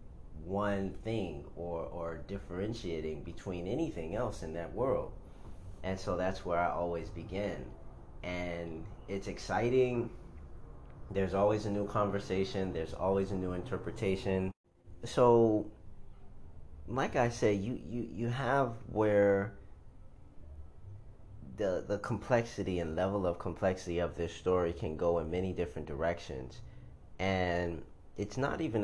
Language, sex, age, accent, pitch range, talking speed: English, male, 30-49, American, 85-100 Hz, 125 wpm